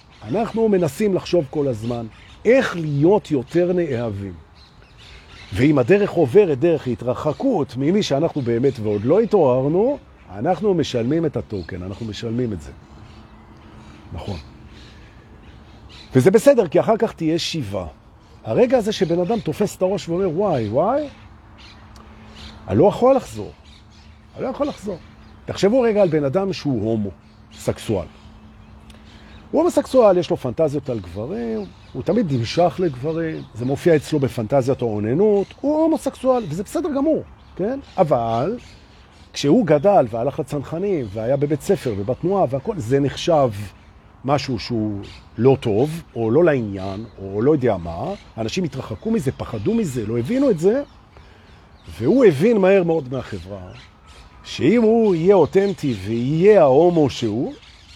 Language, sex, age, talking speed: Hebrew, male, 50-69, 110 wpm